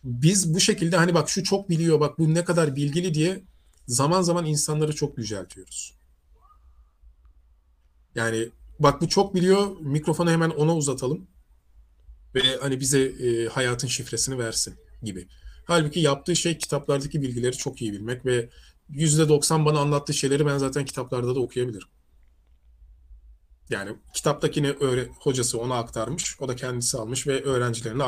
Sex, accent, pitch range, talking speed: male, native, 110-155 Hz, 140 wpm